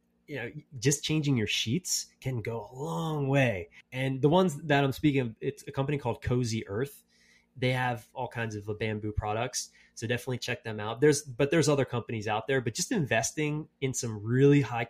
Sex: male